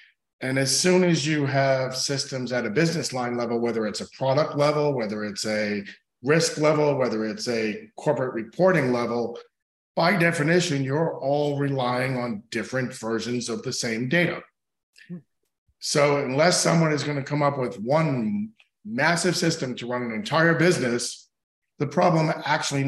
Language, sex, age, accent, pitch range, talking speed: English, male, 40-59, American, 115-155 Hz, 155 wpm